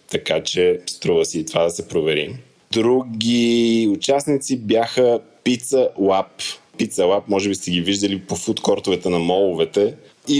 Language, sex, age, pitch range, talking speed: Bulgarian, male, 20-39, 95-120 Hz, 150 wpm